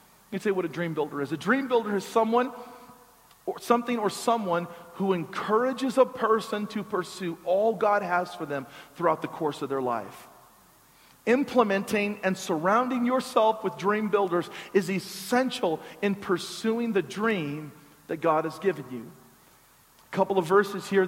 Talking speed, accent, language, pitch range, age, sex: 160 wpm, American, English, 180-225 Hz, 40-59, male